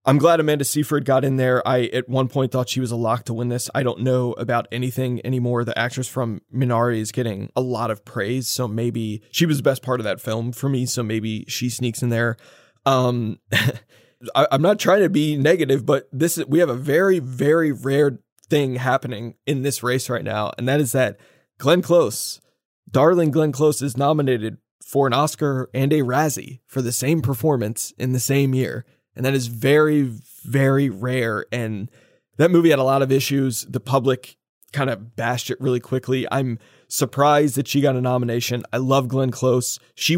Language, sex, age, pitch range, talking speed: English, male, 20-39, 120-140 Hz, 200 wpm